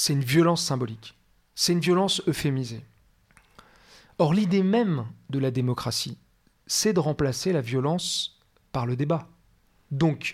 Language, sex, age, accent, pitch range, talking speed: French, male, 40-59, French, 130-180 Hz, 135 wpm